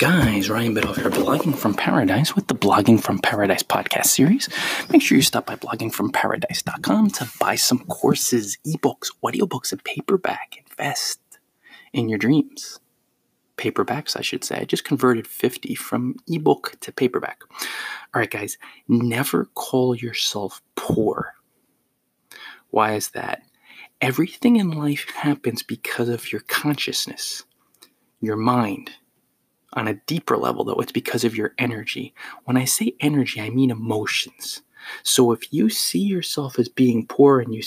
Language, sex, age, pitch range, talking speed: English, male, 30-49, 115-140 Hz, 145 wpm